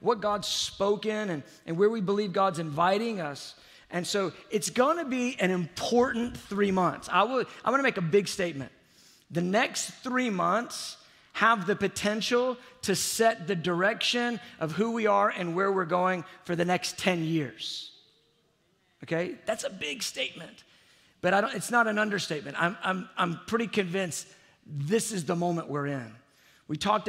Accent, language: American, English